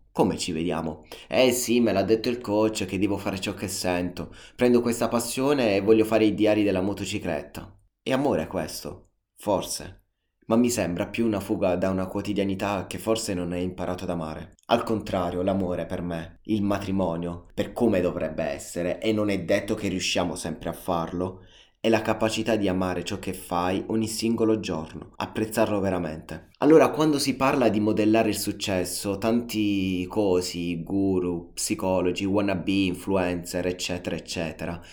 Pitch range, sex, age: 90-110 Hz, male, 20-39